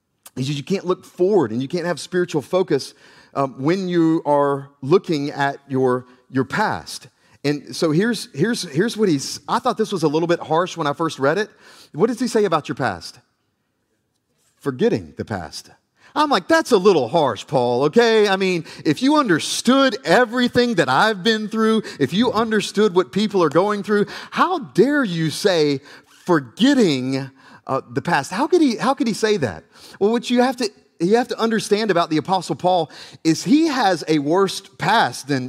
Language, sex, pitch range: English, male, 155-215 Hz